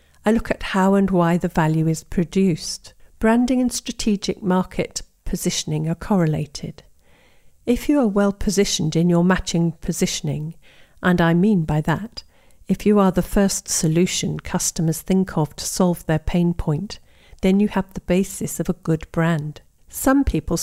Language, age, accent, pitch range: English, 50-69, British, 165-205 Hz